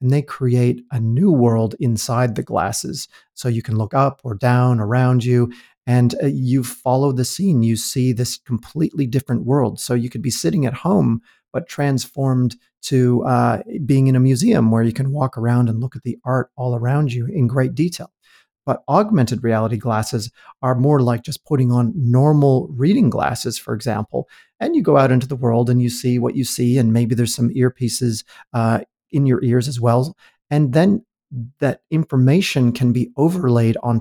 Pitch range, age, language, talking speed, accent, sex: 120-140 Hz, 40-59, English, 190 wpm, American, male